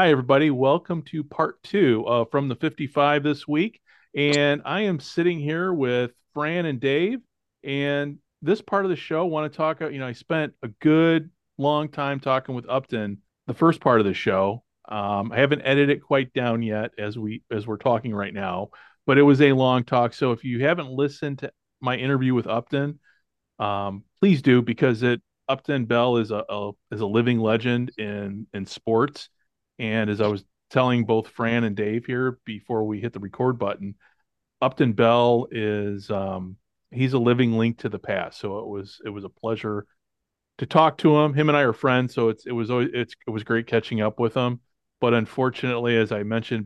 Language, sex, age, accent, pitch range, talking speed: English, male, 40-59, American, 110-140 Hz, 205 wpm